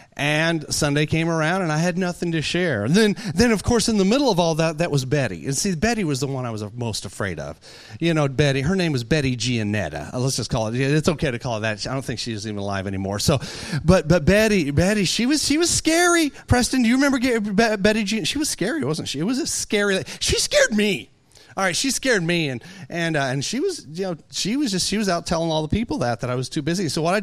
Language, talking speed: English, 240 wpm